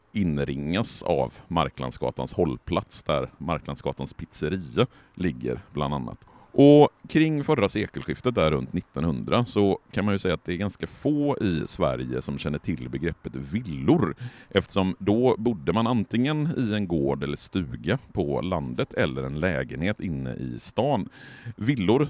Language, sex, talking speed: Swedish, male, 145 wpm